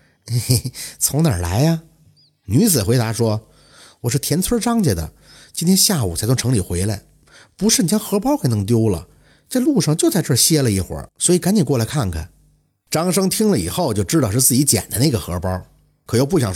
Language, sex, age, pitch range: Chinese, male, 50-69, 105-170 Hz